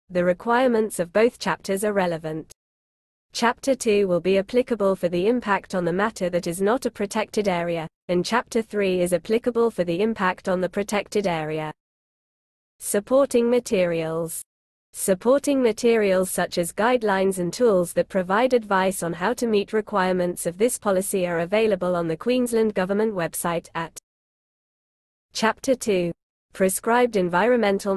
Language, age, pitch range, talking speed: English, 20-39, 175-220 Hz, 145 wpm